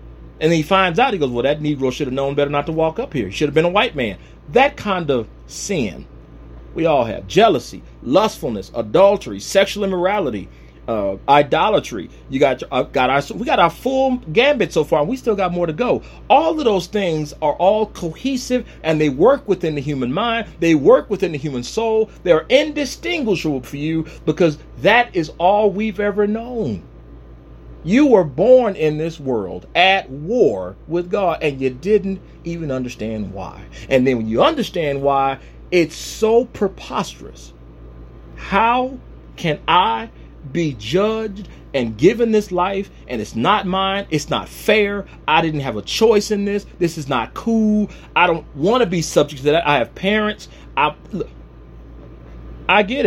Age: 40-59